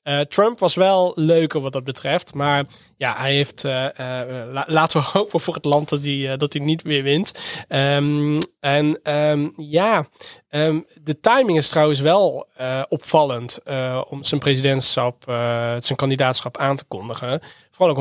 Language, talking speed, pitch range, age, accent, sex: Dutch, 175 wpm, 130-155 Hz, 20-39, Dutch, male